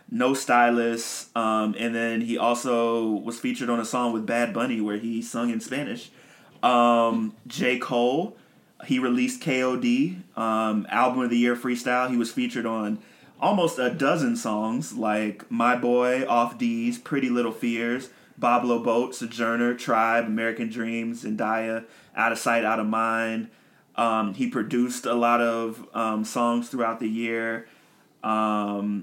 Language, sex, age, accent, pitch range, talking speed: English, male, 30-49, American, 110-125 Hz, 150 wpm